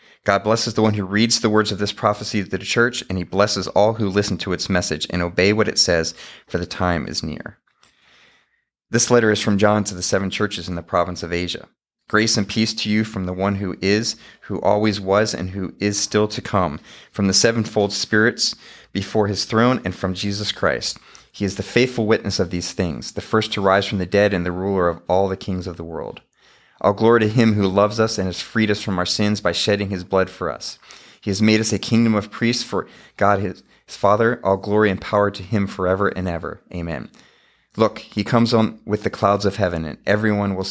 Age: 30-49